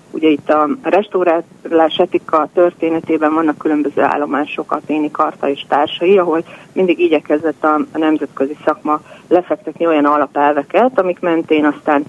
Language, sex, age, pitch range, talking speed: Hungarian, female, 40-59, 150-185 Hz, 125 wpm